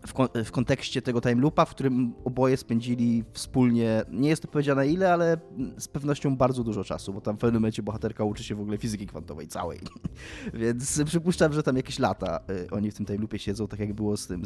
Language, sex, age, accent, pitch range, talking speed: Polish, male, 20-39, native, 105-150 Hz, 210 wpm